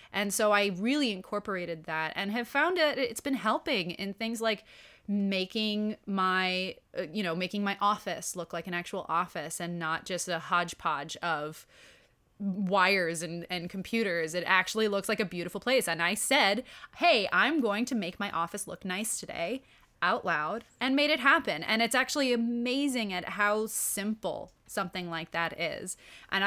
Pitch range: 180-230 Hz